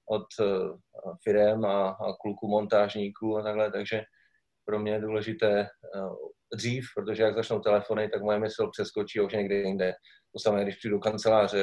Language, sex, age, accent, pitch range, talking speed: Czech, male, 20-39, native, 105-115 Hz, 155 wpm